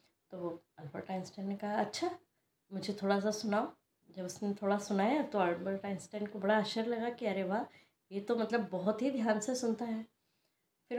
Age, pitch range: 20-39, 195-235 Hz